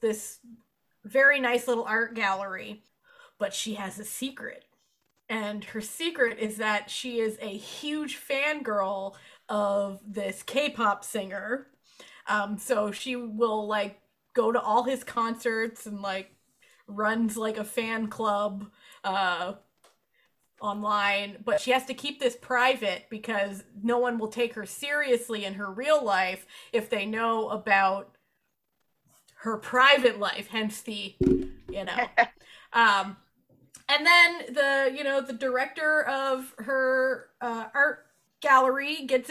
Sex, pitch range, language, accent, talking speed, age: female, 210-270 Hz, English, American, 135 wpm, 20-39